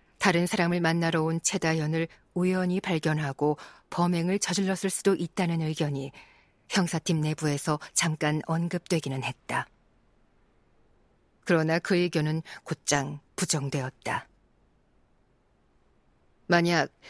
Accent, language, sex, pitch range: native, Korean, female, 155-190 Hz